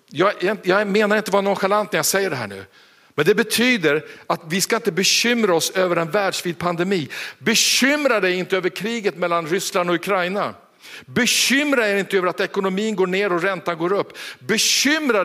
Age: 50-69